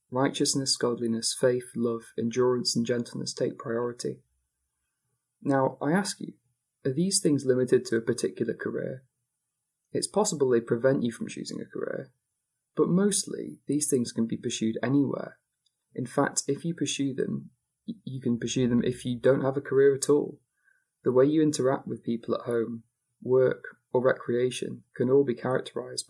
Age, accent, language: 20-39, British, English